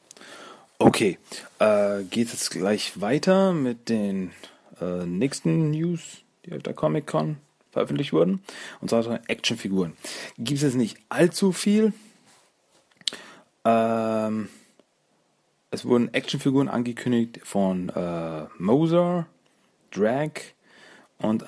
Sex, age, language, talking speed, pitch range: male, 30-49, German, 100 wpm, 100-145 Hz